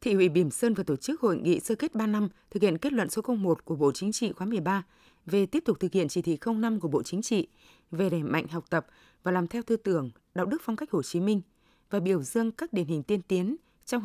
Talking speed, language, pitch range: 270 wpm, Vietnamese, 180-235 Hz